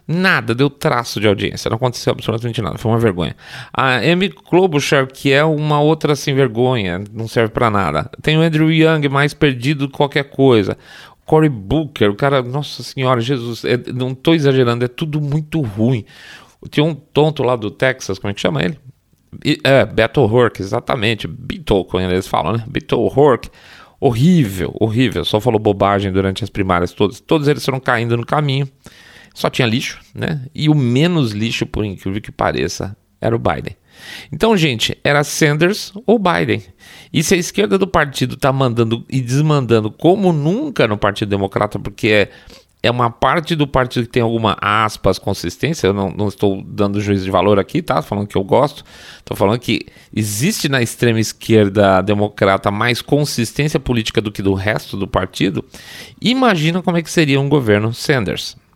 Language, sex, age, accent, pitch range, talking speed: Portuguese, male, 40-59, Brazilian, 105-150 Hz, 180 wpm